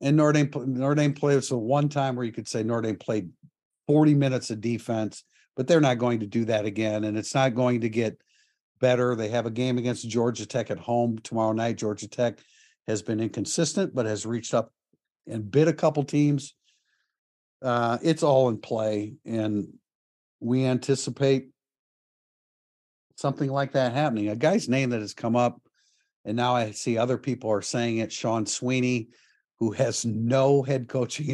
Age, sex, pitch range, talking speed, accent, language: 50-69, male, 110-130 Hz, 180 wpm, American, English